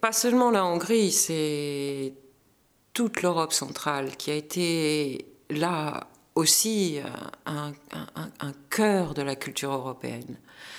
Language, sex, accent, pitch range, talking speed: French, female, French, 150-185 Hz, 115 wpm